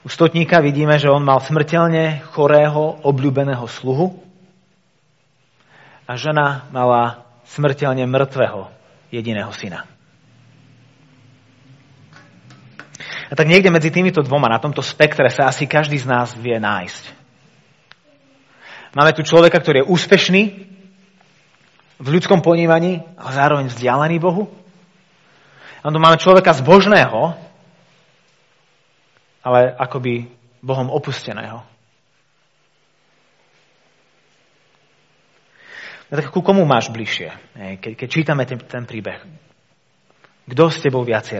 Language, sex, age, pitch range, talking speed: Slovak, male, 30-49, 125-165 Hz, 100 wpm